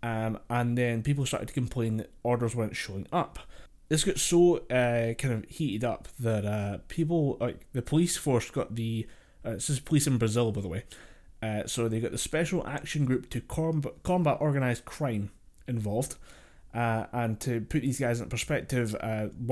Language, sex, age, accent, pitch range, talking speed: English, male, 20-39, British, 110-130 Hz, 190 wpm